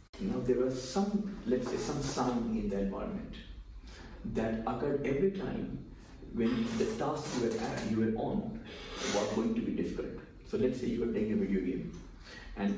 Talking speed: 185 wpm